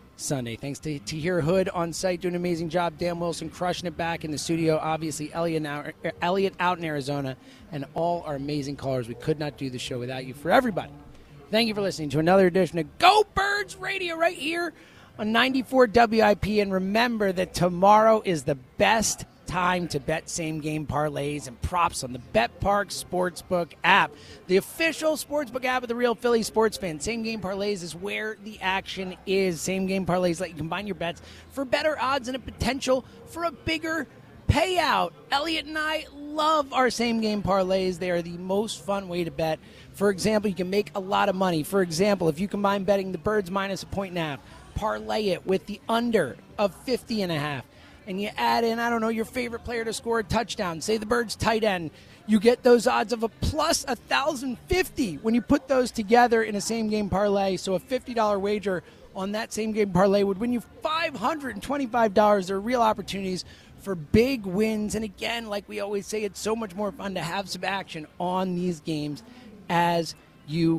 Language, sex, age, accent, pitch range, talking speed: English, male, 30-49, American, 170-230 Hz, 195 wpm